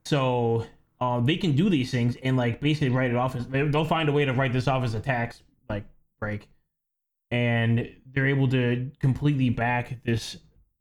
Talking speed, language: 190 wpm, English